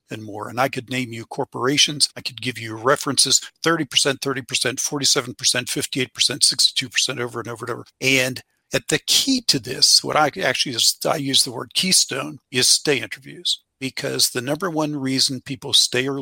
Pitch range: 120-140 Hz